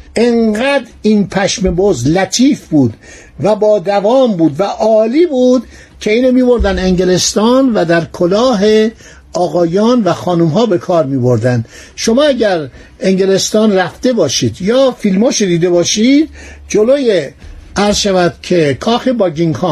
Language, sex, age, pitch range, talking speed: Persian, male, 60-79, 175-230 Hz, 125 wpm